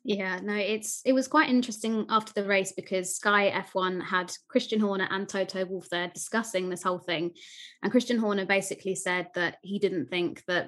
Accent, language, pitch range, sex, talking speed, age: British, English, 185-215 Hz, female, 190 wpm, 20-39